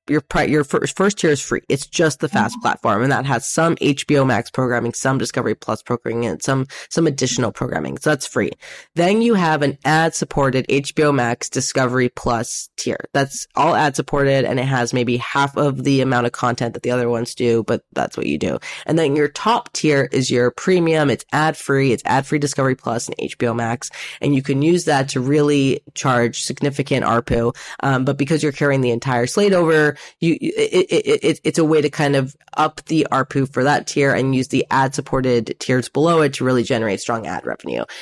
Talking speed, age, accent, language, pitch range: 215 wpm, 20-39, American, English, 125-155 Hz